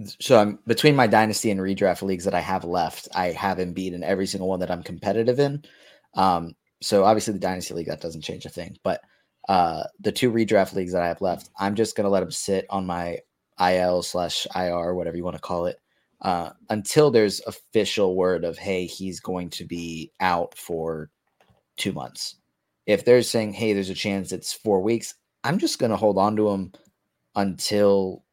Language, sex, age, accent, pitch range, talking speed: English, male, 20-39, American, 90-110 Hz, 200 wpm